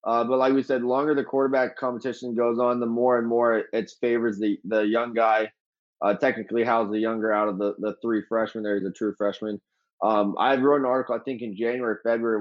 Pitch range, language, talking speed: 110-125 Hz, English, 235 wpm